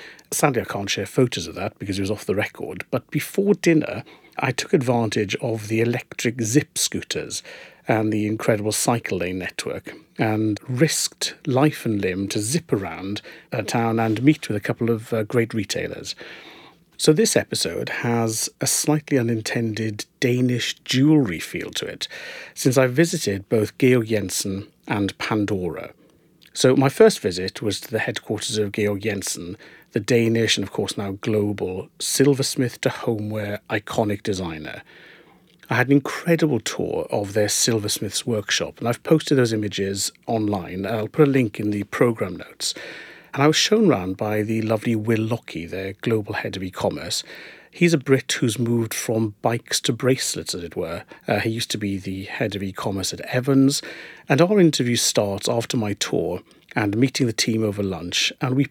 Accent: British